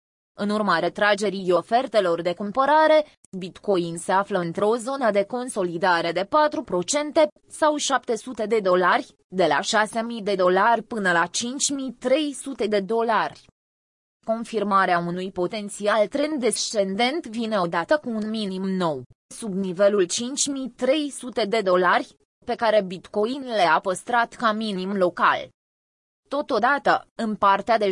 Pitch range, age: 185-235 Hz, 20-39